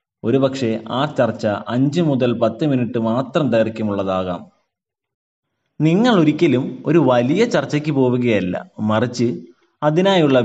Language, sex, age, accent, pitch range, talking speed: Malayalam, male, 30-49, native, 115-150 Hz, 105 wpm